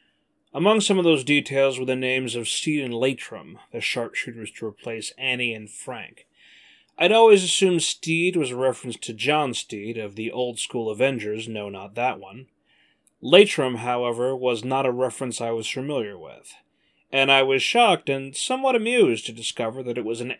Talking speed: 180 wpm